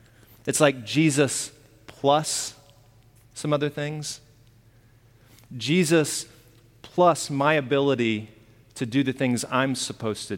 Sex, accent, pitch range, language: male, American, 115-150 Hz, English